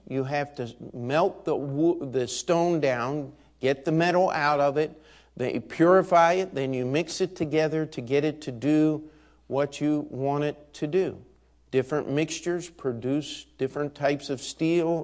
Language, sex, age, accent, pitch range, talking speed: English, male, 50-69, American, 100-155 Hz, 165 wpm